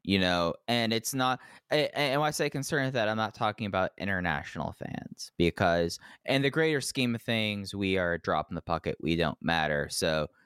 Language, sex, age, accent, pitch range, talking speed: English, male, 20-39, American, 90-125 Hz, 205 wpm